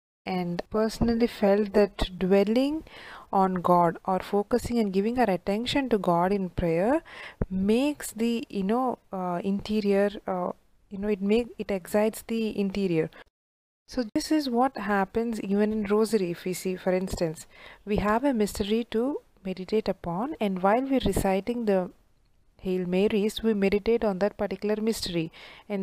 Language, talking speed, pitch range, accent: English, 155 wpm, 185-225 Hz, Indian